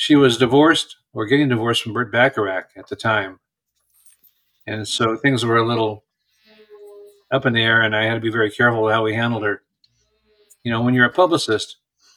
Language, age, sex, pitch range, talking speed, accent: English, 50-69, male, 105-140 Hz, 190 wpm, American